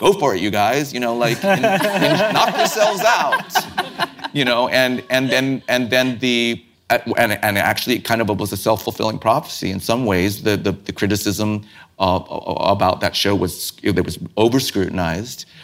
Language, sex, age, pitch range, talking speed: English, male, 30-49, 85-120 Hz, 180 wpm